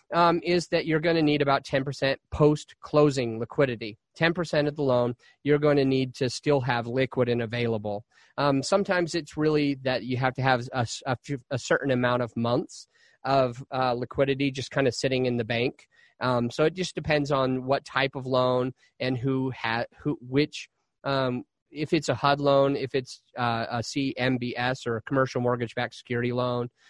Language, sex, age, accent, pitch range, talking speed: English, male, 30-49, American, 125-150 Hz, 185 wpm